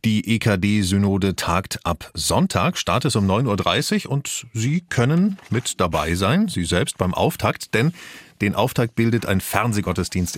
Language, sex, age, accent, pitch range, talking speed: German, male, 30-49, German, 85-115 Hz, 150 wpm